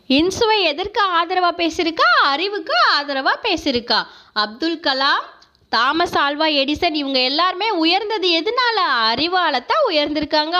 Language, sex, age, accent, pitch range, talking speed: Tamil, female, 20-39, native, 275-390 Hz, 100 wpm